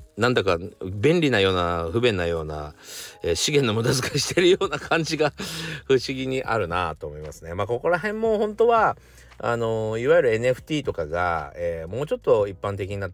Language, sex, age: Japanese, male, 40-59